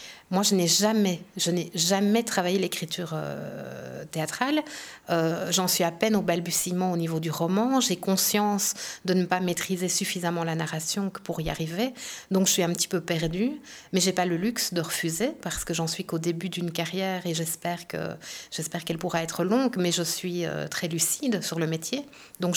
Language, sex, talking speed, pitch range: French, female, 200 wpm, 170-205 Hz